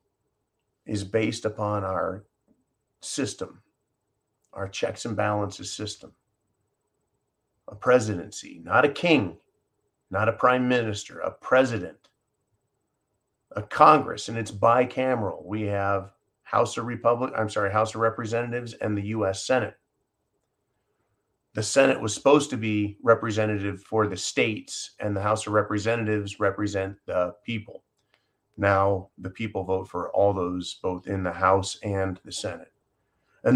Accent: American